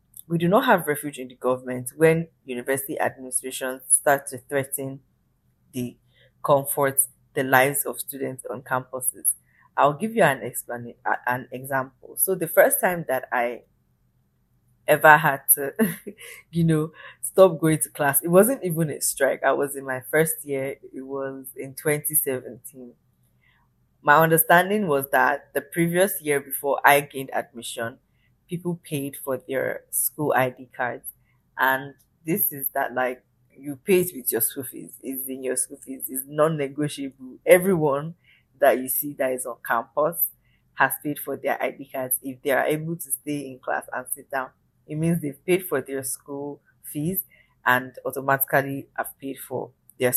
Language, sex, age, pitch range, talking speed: English, female, 20-39, 130-155 Hz, 160 wpm